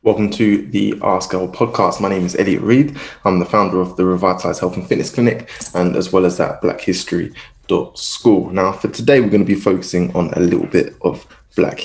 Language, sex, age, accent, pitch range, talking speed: English, male, 20-39, British, 90-100 Hz, 210 wpm